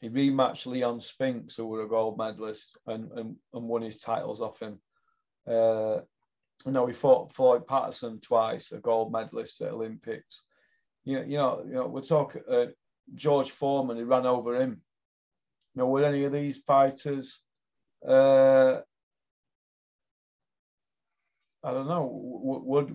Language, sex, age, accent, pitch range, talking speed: English, male, 40-59, British, 120-145 Hz, 150 wpm